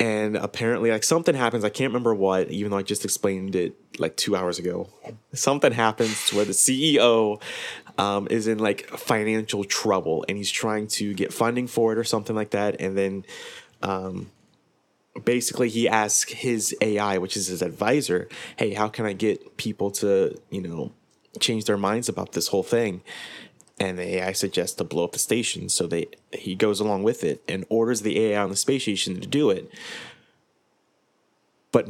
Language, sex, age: English, male, 20-39